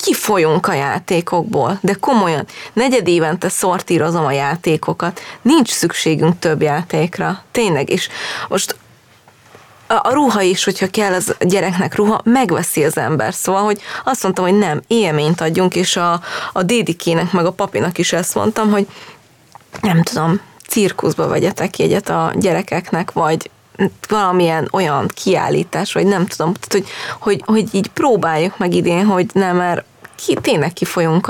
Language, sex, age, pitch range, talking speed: Hungarian, female, 20-39, 160-195 Hz, 145 wpm